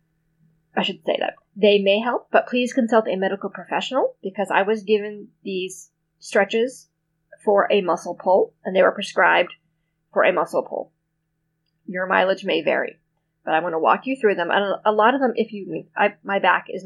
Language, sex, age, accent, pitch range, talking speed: English, female, 30-49, American, 165-215 Hz, 190 wpm